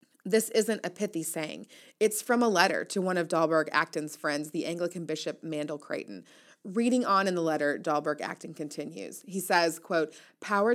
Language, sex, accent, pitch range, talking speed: English, female, American, 155-200 Hz, 180 wpm